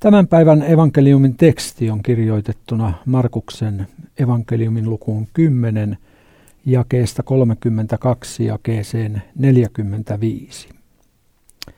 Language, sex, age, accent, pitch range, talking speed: Finnish, male, 60-79, native, 110-135 Hz, 75 wpm